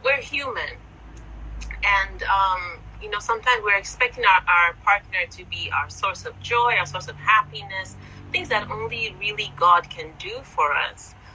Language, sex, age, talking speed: English, female, 30-49, 165 wpm